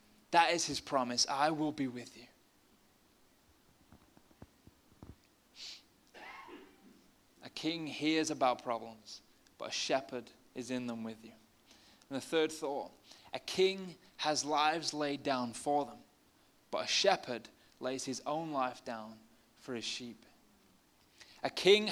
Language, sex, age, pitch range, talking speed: English, male, 20-39, 140-180 Hz, 130 wpm